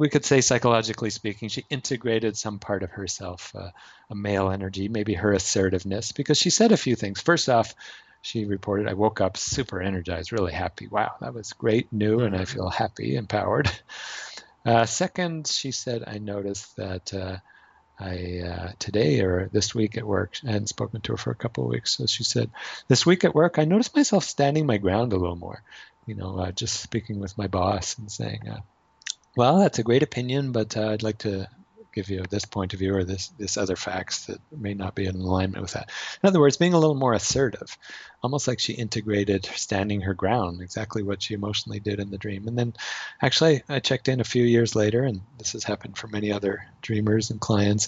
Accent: American